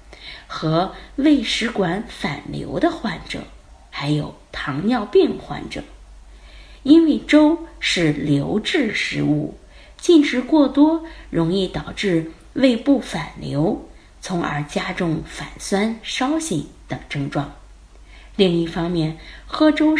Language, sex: Chinese, female